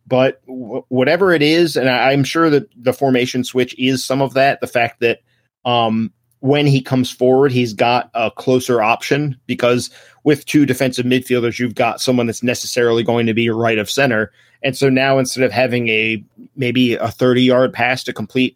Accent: American